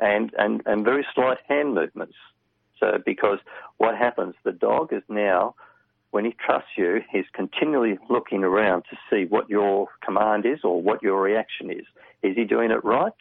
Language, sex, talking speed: English, male, 175 wpm